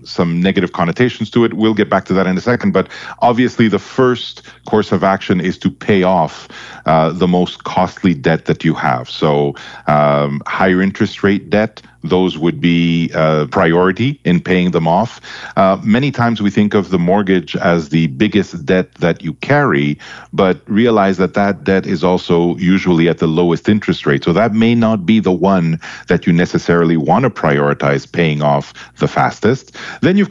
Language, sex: English, male